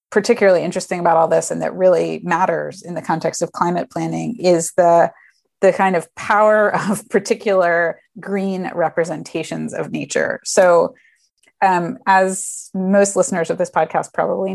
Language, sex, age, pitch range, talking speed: English, female, 30-49, 165-195 Hz, 150 wpm